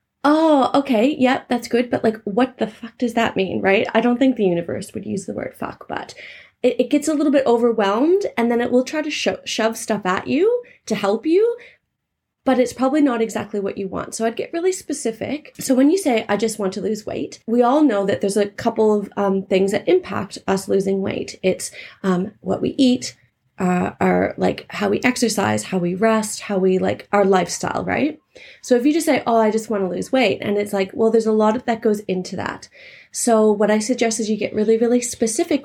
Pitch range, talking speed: 195-255 Hz, 230 wpm